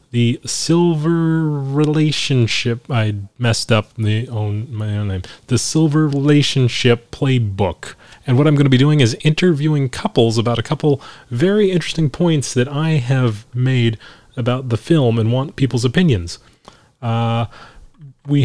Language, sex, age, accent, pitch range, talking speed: English, male, 30-49, American, 110-140 Hz, 135 wpm